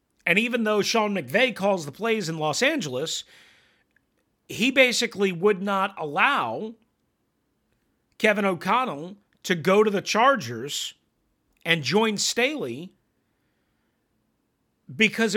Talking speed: 105 wpm